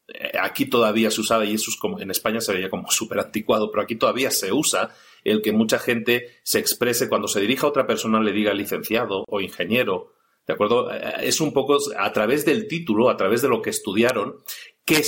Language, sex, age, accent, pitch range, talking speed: Spanish, male, 40-59, Mexican, 110-150 Hz, 210 wpm